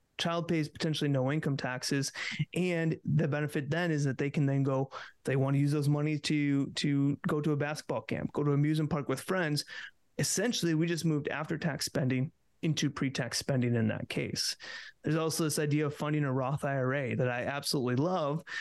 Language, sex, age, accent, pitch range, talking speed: English, male, 30-49, American, 140-160 Hz, 200 wpm